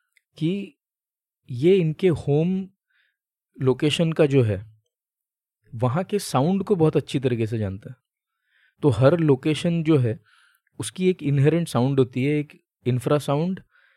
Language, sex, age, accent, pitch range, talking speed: Hindi, male, 20-39, native, 125-165 Hz, 135 wpm